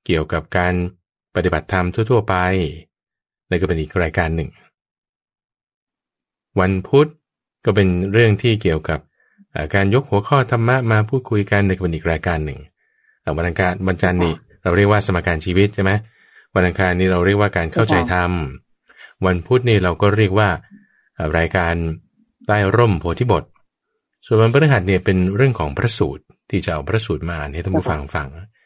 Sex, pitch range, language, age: male, 85-110 Hz, English, 20-39